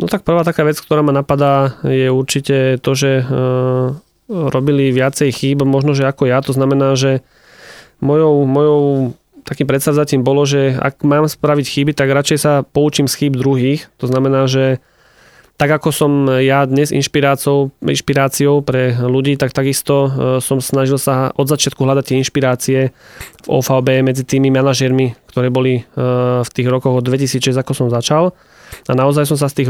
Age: 20-39